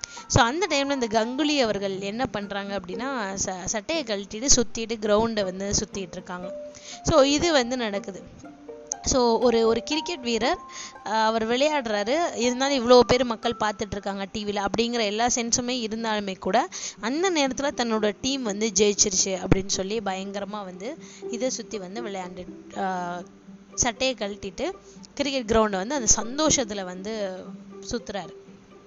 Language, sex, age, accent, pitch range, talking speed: Tamil, female, 20-39, native, 200-255 Hz, 130 wpm